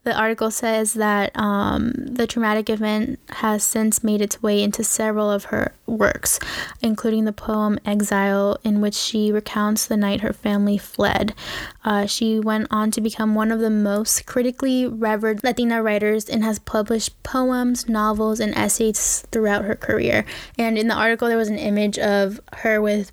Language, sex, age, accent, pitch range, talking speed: English, female, 10-29, American, 210-235 Hz, 170 wpm